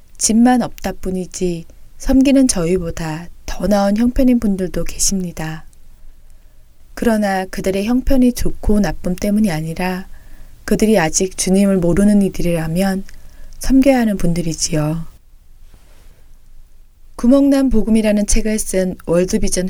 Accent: native